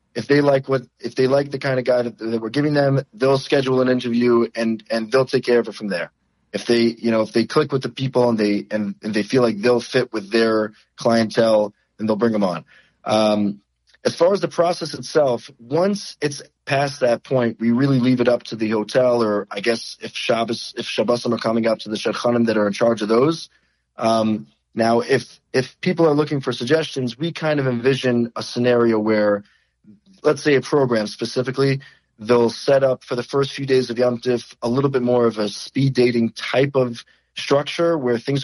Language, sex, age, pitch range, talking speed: English, male, 30-49, 115-135 Hz, 215 wpm